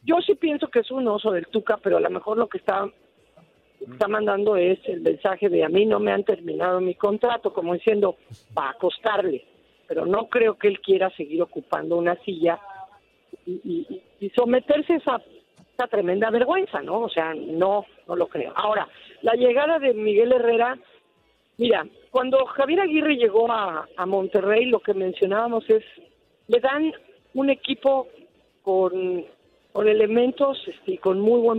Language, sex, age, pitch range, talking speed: Spanish, female, 50-69, 195-270 Hz, 175 wpm